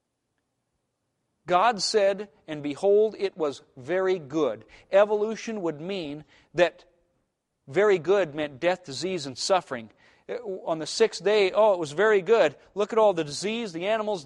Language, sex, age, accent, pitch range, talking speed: English, male, 40-59, American, 150-205 Hz, 150 wpm